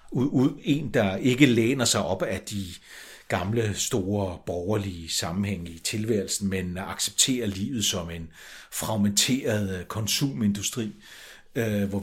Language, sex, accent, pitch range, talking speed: Danish, male, native, 100-125 Hz, 110 wpm